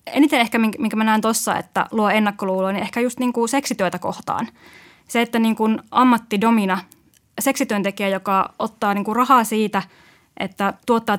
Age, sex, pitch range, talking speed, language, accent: 20-39, female, 195-240 Hz, 155 wpm, Finnish, native